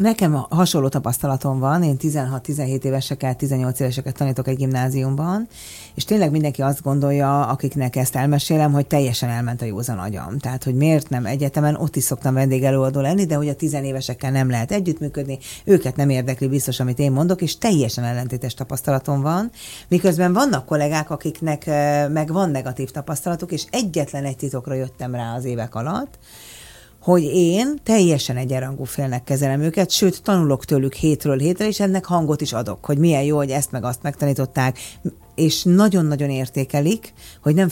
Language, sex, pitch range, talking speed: Hungarian, female, 130-155 Hz, 160 wpm